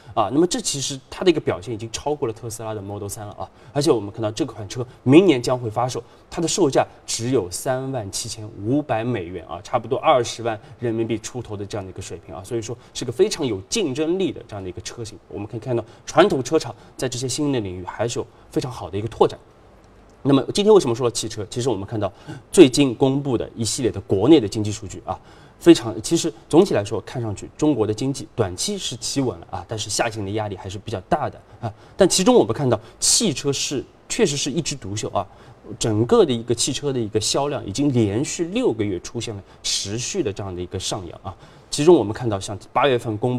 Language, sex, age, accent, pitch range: Chinese, male, 20-39, native, 105-140 Hz